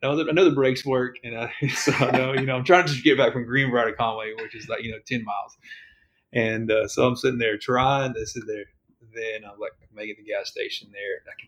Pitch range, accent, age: 110-160 Hz, American, 30-49